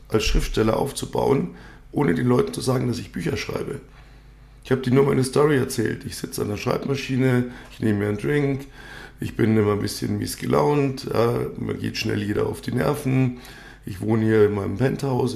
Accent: German